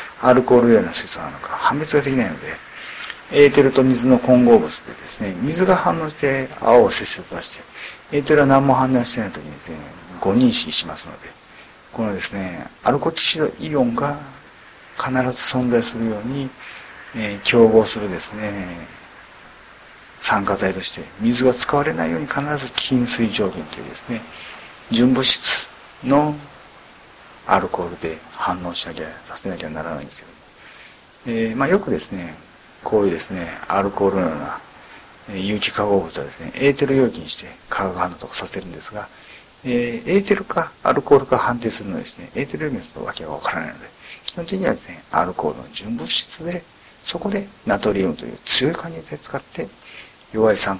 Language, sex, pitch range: Japanese, male, 110-145 Hz